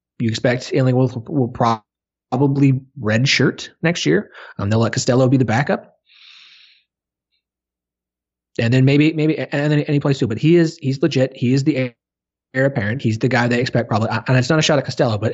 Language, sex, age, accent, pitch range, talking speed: English, male, 30-49, American, 90-145 Hz, 190 wpm